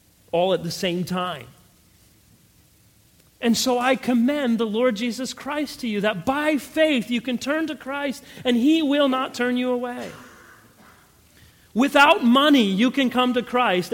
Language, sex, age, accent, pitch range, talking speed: English, male, 40-59, American, 155-230 Hz, 160 wpm